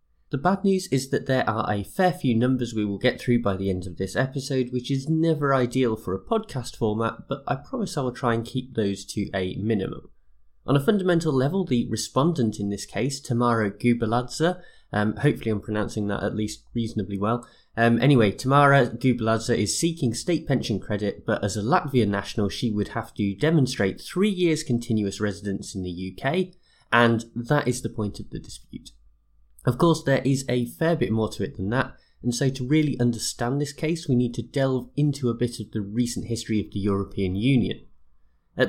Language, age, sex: English, 20-39, male